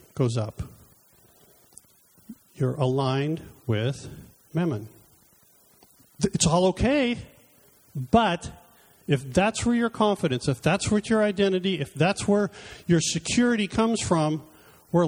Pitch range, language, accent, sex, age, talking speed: 135-185 Hz, English, American, male, 50-69, 110 wpm